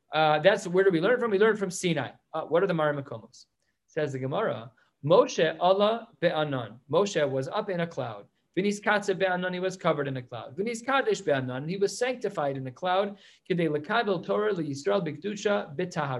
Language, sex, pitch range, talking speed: English, male, 140-195 Hz, 155 wpm